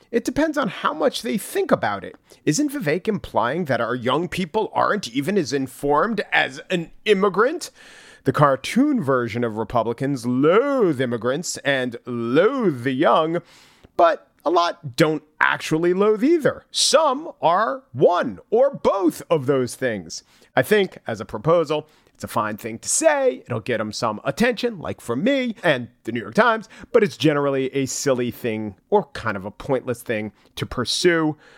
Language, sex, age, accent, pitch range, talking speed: English, male, 40-59, American, 125-190 Hz, 165 wpm